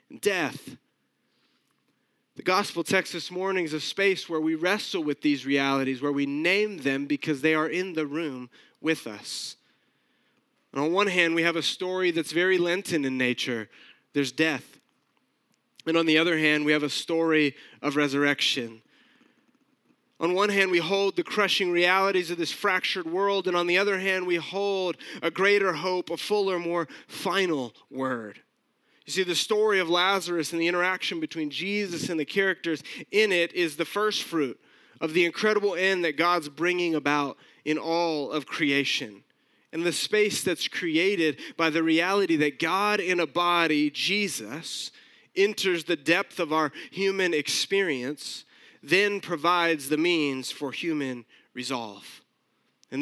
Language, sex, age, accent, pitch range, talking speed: English, male, 30-49, American, 150-190 Hz, 160 wpm